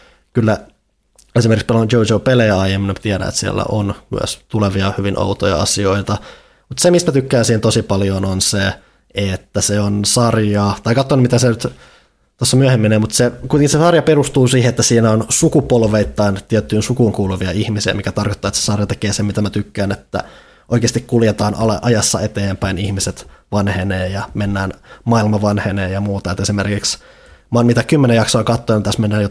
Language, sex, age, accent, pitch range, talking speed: Finnish, male, 20-39, native, 100-115 Hz, 170 wpm